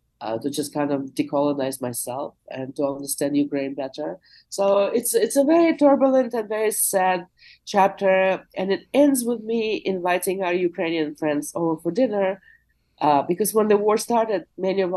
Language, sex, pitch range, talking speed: English, female, 145-190 Hz, 170 wpm